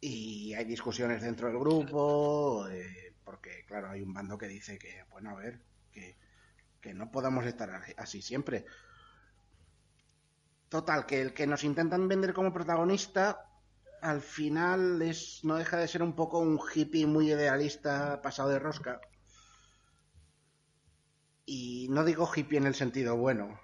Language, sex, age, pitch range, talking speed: Spanish, male, 30-49, 115-155 Hz, 145 wpm